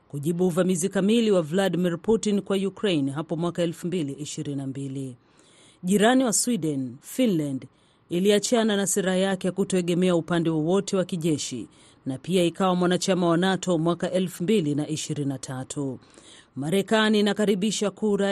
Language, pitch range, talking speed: Swahili, 155-200 Hz, 120 wpm